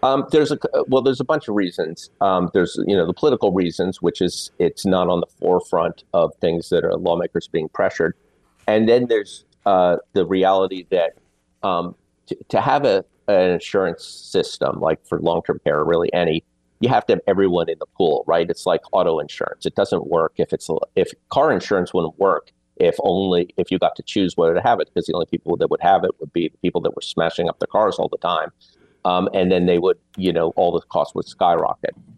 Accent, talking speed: American, 225 wpm